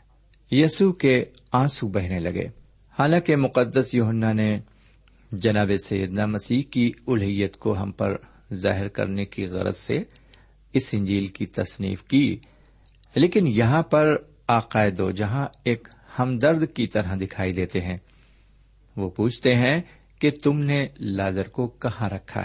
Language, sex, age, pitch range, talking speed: Urdu, male, 50-69, 100-135 Hz, 130 wpm